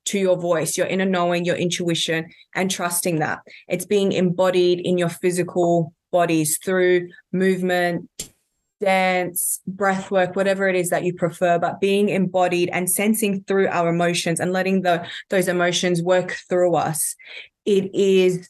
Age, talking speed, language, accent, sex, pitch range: 20-39, 150 wpm, English, Australian, female, 175-190 Hz